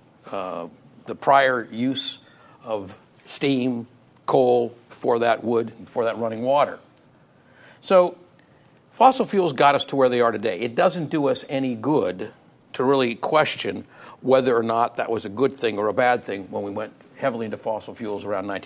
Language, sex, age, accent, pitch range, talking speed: English, male, 60-79, American, 120-170 Hz, 170 wpm